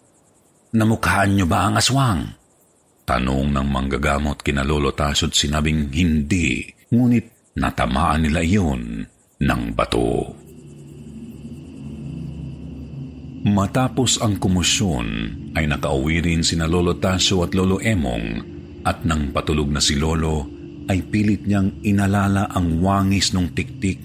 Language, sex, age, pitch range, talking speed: Filipino, male, 50-69, 75-100 Hz, 110 wpm